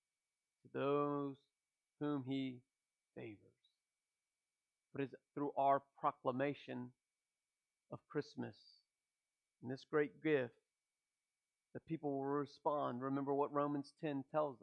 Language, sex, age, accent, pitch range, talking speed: English, male, 40-59, American, 125-145 Hz, 105 wpm